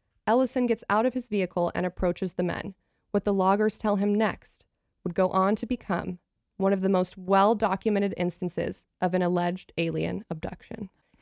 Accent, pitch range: American, 185-230 Hz